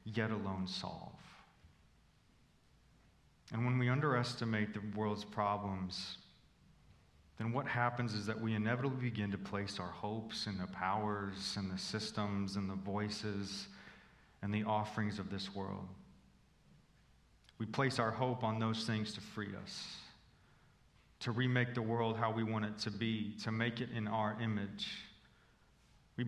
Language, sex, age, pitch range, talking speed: English, male, 30-49, 100-120 Hz, 145 wpm